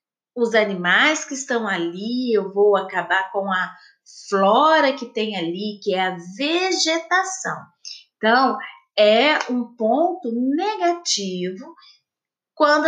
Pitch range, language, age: 215-330 Hz, Portuguese, 30-49